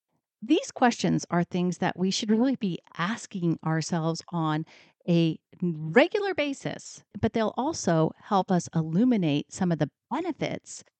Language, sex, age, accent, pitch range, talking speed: English, female, 40-59, American, 160-220 Hz, 135 wpm